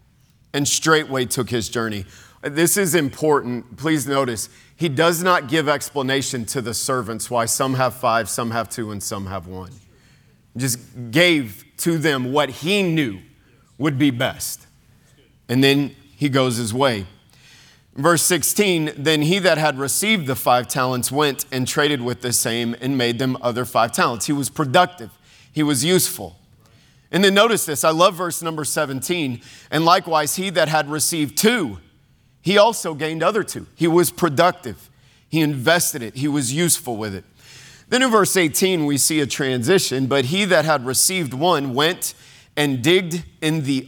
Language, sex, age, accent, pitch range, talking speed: English, male, 40-59, American, 125-165 Hz, 170 wpm